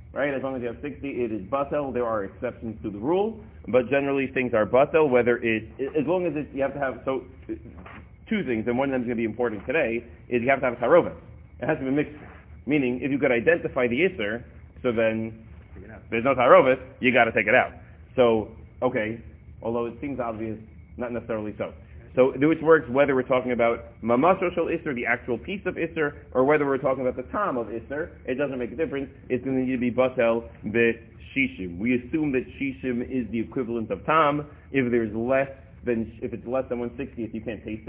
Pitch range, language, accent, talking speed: 110-135 Hz, English, American, 225 wpm